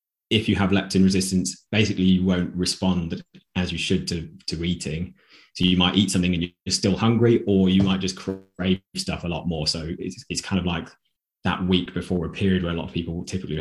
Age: 20-39